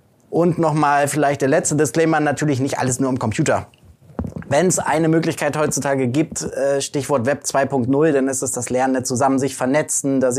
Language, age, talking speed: German, 20-39, 175 wpm